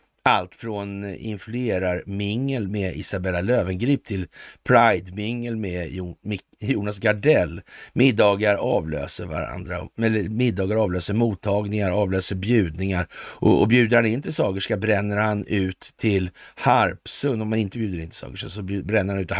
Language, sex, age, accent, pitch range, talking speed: Swedish, male, 50-69, native, 95-115 Hz, 135 wpm